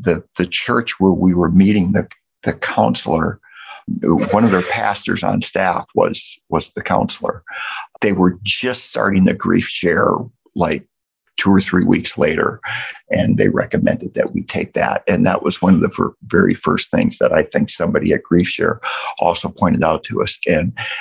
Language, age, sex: English, 50-69, male